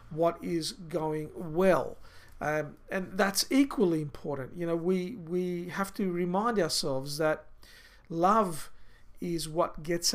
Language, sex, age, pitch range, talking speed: English, male, 50-69, 155-185 Hz, 130 wpm